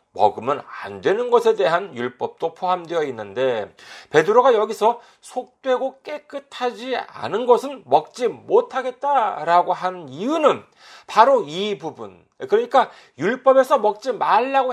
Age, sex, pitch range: 40-59, male, 210-295 Hz